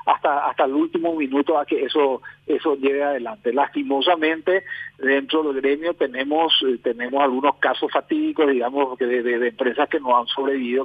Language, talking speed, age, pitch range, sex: Spanish, 160 wpm, 40-59, 140-185 Hz, male